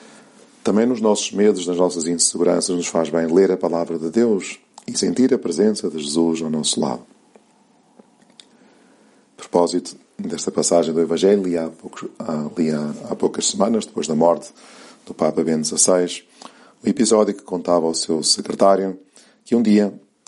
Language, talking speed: Portuguese, 150 wpm